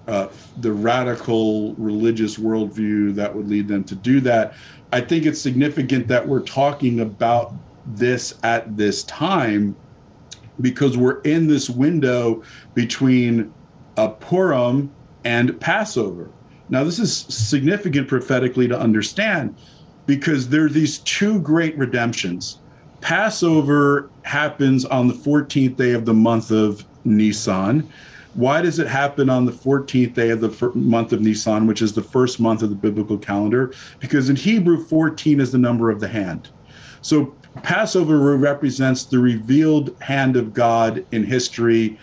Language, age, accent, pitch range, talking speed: English, 50-69, American, 115-140 Hz, 145 wpm